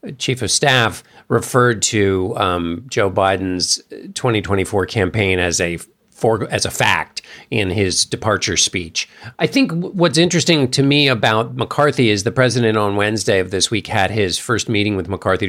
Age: 50-69